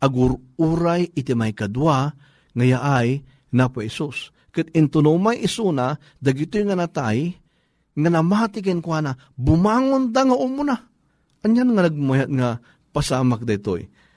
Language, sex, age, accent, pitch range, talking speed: Filipino, male, 50-69, native, 135-180 Hz, 125 wpm